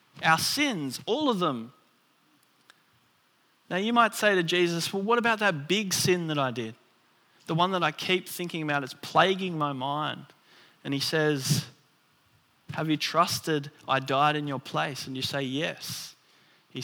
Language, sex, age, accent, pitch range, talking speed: English, male, 20-39, Australian, 135-170 Hz, 170 wpm